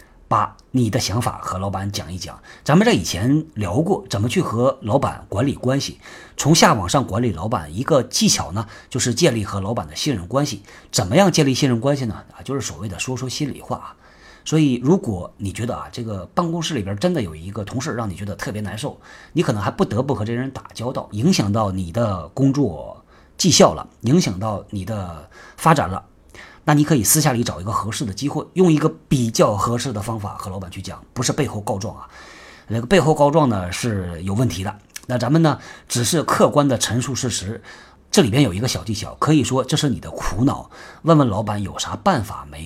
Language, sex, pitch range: Chinese, male, 100-145 Hz